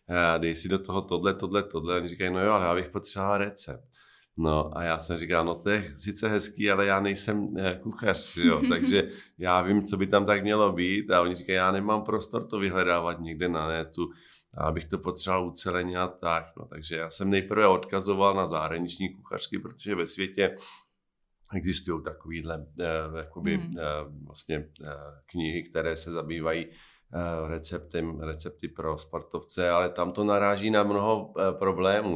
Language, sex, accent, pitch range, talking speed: Czech, male, native, 85-105 Hz, 170 wpm